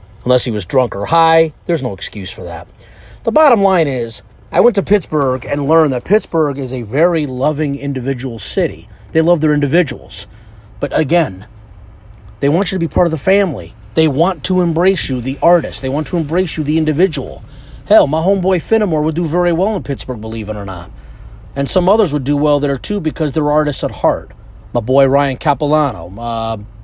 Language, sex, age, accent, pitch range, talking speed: English, male, 30-49, American, 110-165 Hz, 200 wpm